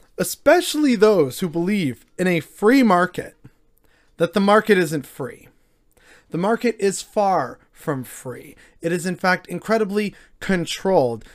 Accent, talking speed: American, 130 wpm